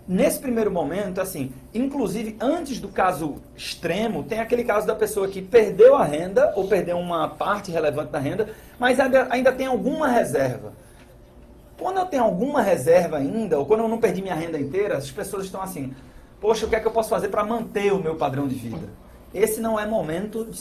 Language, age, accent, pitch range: Portuguese, 40-59, Brazilian, 170-240 Hz